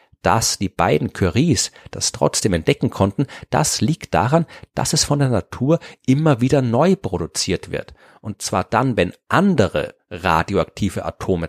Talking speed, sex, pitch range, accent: 145 wpm, male, 95-130 Hz, German